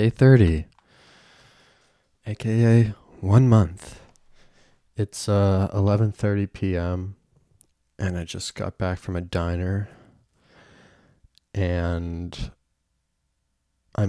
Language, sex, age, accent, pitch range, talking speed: English, male, 20-39, American, 85-105 Hz, 75 wpm